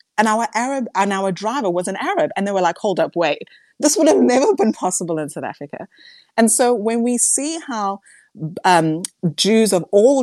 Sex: female